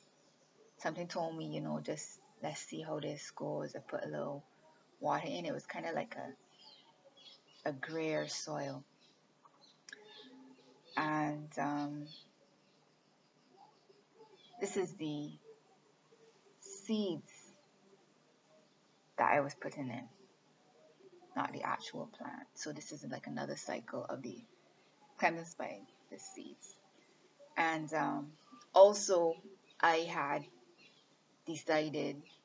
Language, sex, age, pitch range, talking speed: English, female, 20-39, 150-200 Hz, 110 wpm